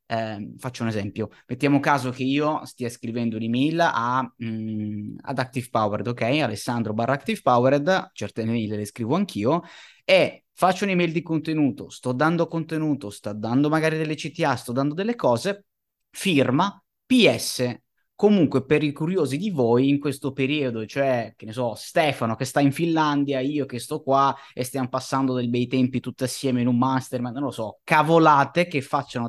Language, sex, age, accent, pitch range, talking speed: Italian, male, 20-39, native, 110-150 Hz, 170 wpm